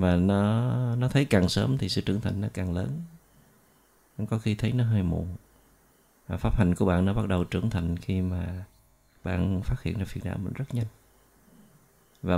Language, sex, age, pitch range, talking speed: Vietnamese, male, 30-49, 90-110 Hz, 195 wpm